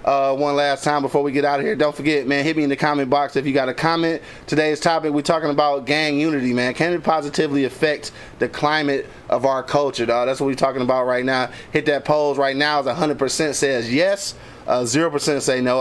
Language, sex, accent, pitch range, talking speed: English, male, American, 130-150 Hz, 245 wpm